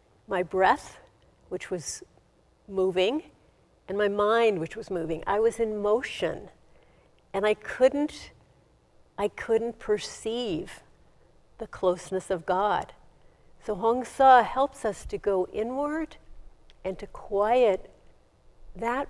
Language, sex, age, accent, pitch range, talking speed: English, female, 50-69, American, 185-215 Hz, 115 wpm